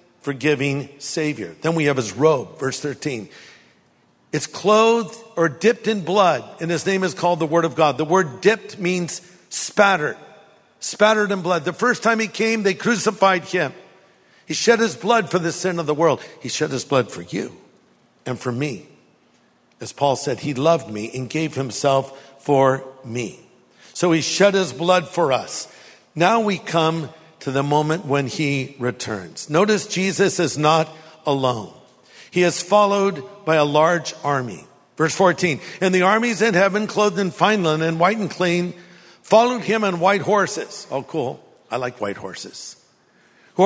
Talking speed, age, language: 175 wpm, 50-69, English